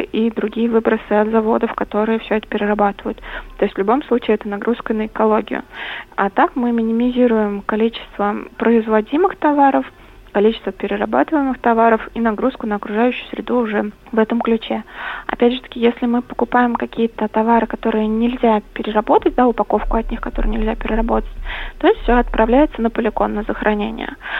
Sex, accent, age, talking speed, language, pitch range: female, native, 20-39, 155 wpm, Russian, 205-245 Hz